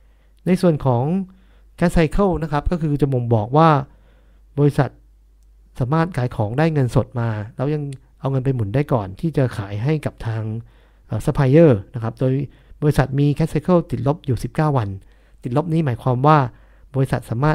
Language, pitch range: Thai, 115-155 Hz